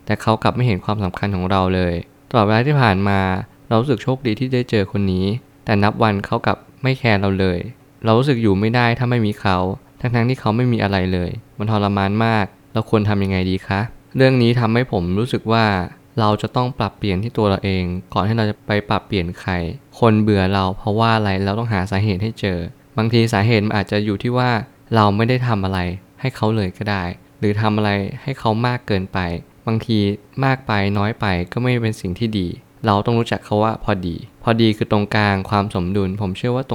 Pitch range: 95-115 Hz